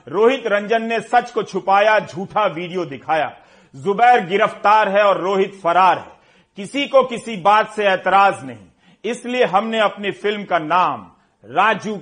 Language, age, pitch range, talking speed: Hindi, 40-59, 175-210 Hz, 150 wpm